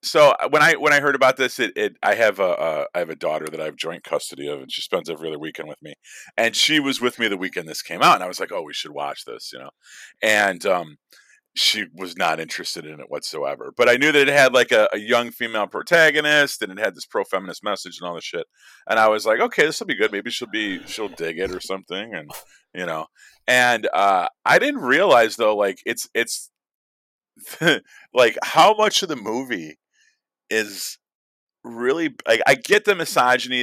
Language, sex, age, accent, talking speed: English, male, 40-59, American, 225 wpm